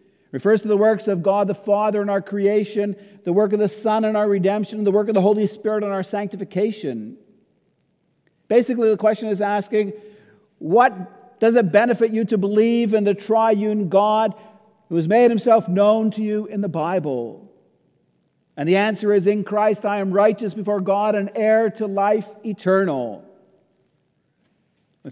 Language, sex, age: English, male, 50-69